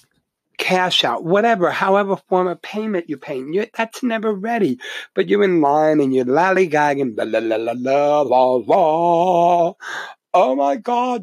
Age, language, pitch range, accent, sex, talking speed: 60-79, English, 145-225 Hz, American, male, 160 wpm